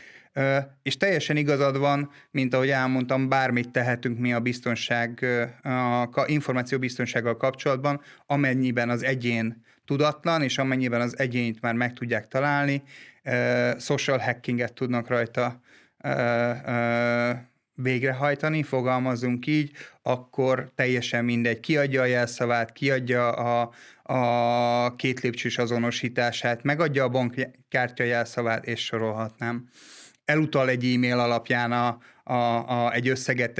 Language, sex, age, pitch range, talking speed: Hungarian, male, 30-49, 120-140 Hz, 115 wpm